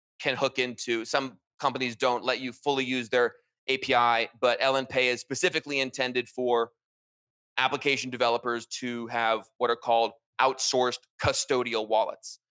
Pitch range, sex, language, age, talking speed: 115-130 Hz, male, English, 20-39, 135 wpm